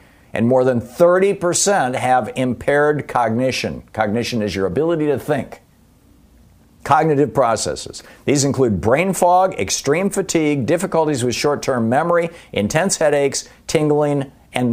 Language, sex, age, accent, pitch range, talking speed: English, male, 50-69, American, 120-150 Hz, 120 wpm